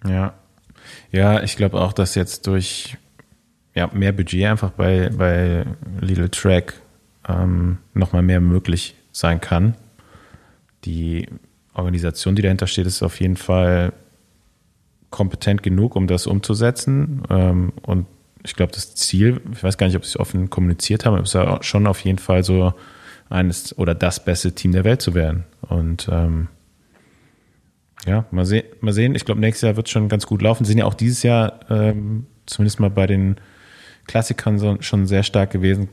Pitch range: 90-105 Hz